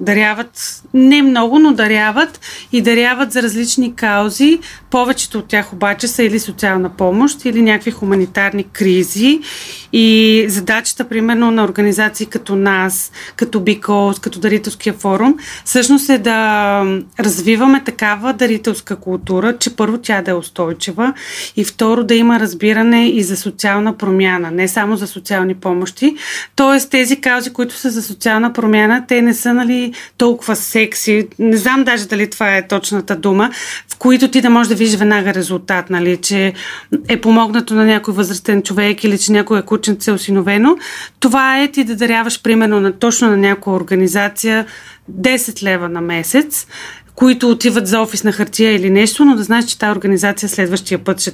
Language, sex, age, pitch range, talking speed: Bulgarian, female, 30-49, 195-235 Hz, 160 wpm